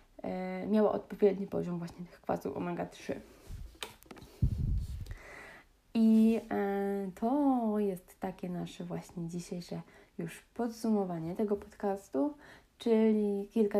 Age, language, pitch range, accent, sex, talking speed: 20-39, Polish, 185-205 Hz, native, female, 85 wpm